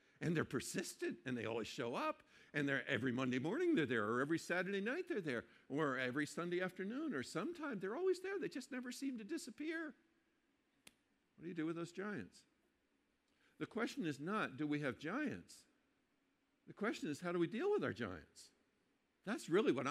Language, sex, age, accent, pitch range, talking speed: English, male, 50-69, American, 115-170 Hz, 195 wpm